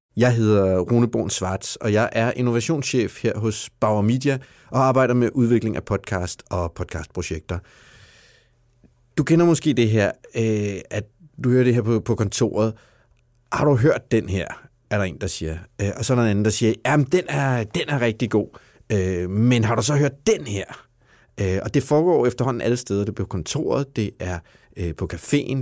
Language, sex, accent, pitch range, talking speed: Danish, male, native, 105-130 Hz, 185 wpm